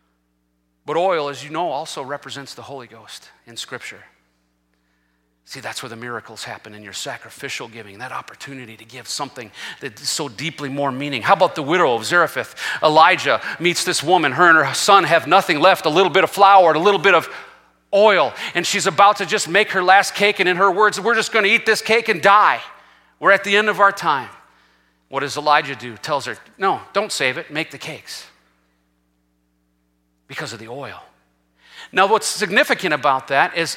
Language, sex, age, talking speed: English, male, 40-59, 195 wpm